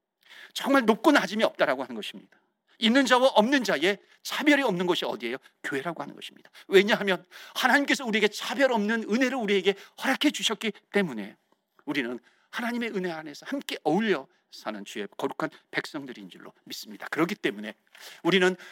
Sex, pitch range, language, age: male, 195-275 Hz, Korean, 40-59